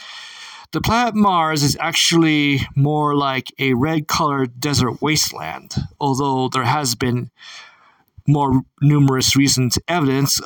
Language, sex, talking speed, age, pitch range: English, male, 110 wpm, 40-59, 130-165 Hz